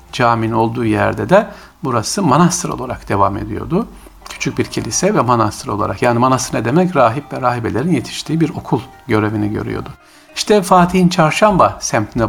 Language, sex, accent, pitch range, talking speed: Turkish, male, native, 110-150 Hz, 150 wpm